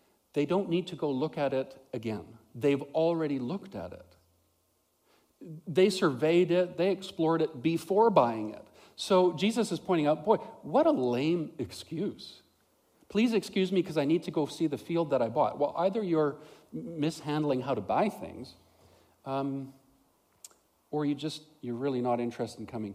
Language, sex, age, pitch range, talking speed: English, male, 50-69, 120-165 Hz, 170 wpm